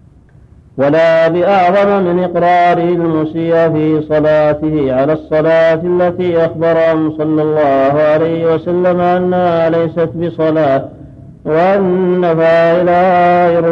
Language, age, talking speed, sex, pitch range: Arabic, 50-69, 90 wpm, male, 155-170 Hz